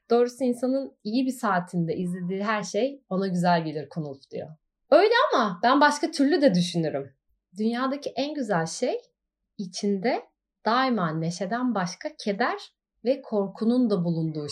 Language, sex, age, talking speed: Turkish, female, 30-49, 135 wpm